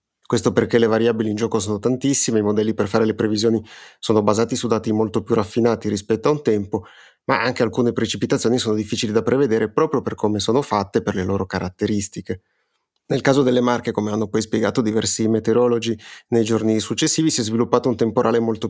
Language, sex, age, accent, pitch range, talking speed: Italian, male, 30-49, native, 110-125 Hz, 200 wpm